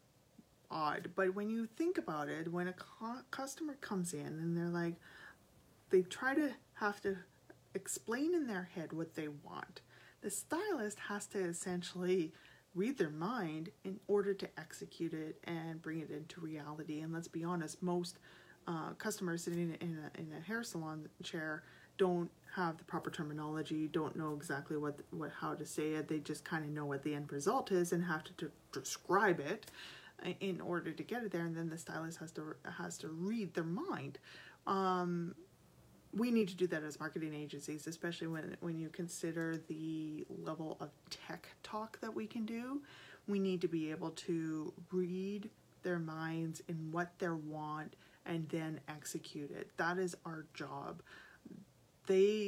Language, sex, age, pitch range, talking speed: English, female, 30-49, 160-185 Hz, 175 wpm